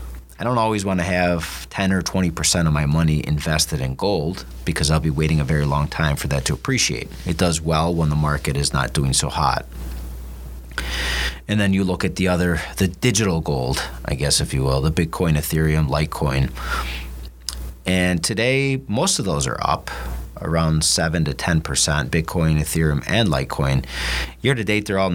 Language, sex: English, male